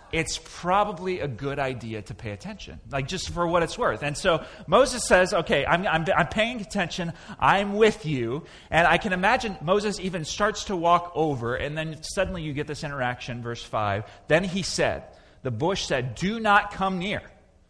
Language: English